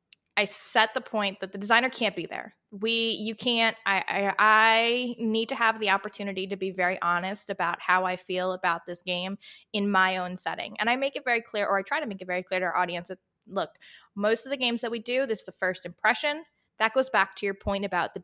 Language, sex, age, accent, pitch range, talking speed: English, female, 20-39, American, 200-250 Hz, 245 wpm